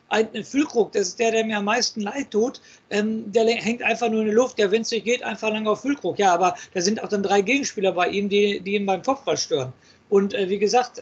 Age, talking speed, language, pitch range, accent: 50-69, 260 wpm, German, 190-220 Hz, German